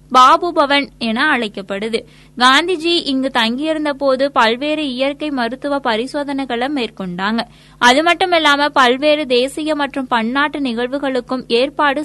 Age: 20-39